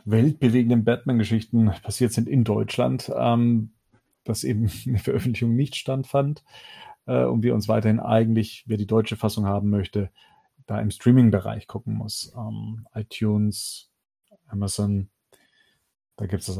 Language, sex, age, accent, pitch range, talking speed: German, male, 40-59, German, 110-130 Hz, 135 wpm